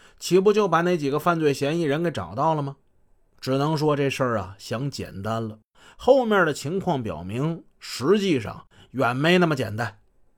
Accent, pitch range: native, 135-190 Hz